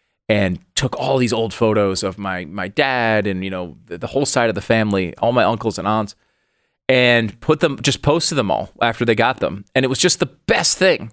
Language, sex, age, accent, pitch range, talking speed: English, male, 30-49, American, 100-130 Hz, 225 wpm